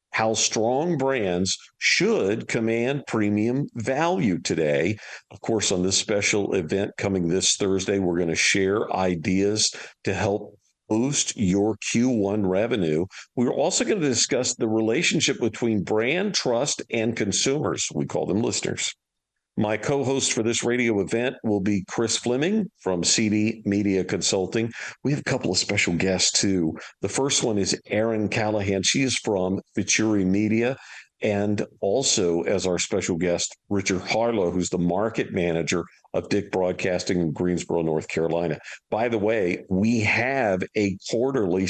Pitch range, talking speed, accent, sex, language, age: 95-110 Hz, 150 wpm, American, male, English, 50-69